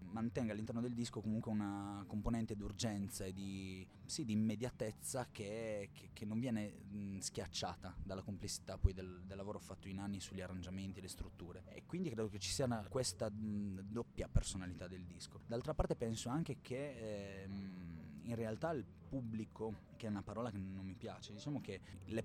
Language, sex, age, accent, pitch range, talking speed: Italian, male, 20-39, native, 95-110 Hz, 185 wpm